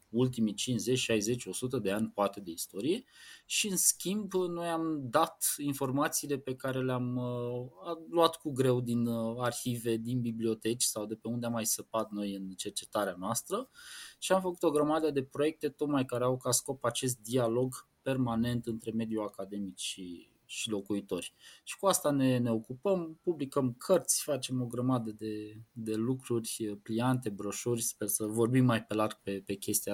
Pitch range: 110-135 Hz